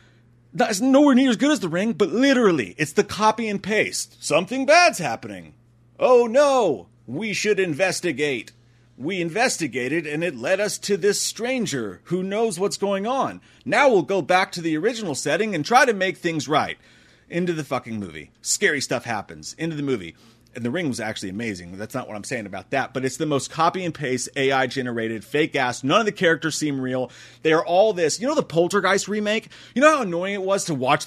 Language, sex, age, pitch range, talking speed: English, male, 30-49, 130-210 Hz, 210 wpm